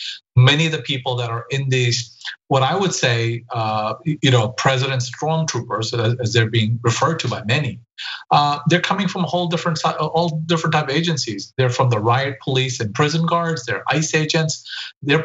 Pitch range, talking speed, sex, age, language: 125-160 Hz, 175 wpm, male, 40-59, English